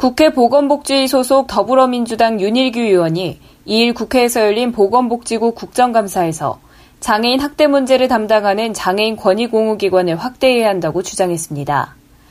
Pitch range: 200-265 Hz